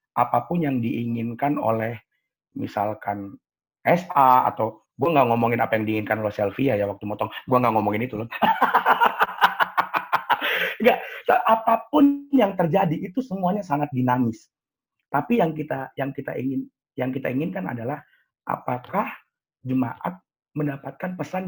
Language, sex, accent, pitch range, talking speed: Indonesian, male, native, 115-165 Hz, 125 wpm